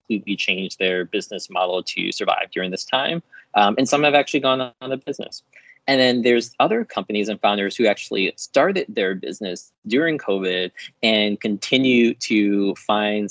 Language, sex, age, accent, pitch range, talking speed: English, male, 20-39, American, 100-120 Hz, 165 wpm